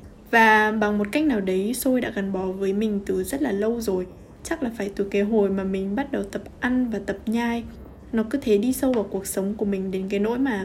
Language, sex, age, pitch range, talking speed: Vietnamese, female, 10-29, 200-245 Hz, 260 wpm